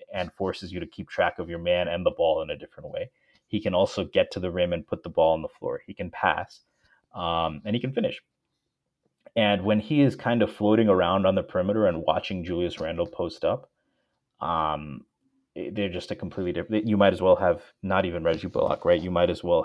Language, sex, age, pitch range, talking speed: English, male, 30-49, 90-140 Hz, 230 wpm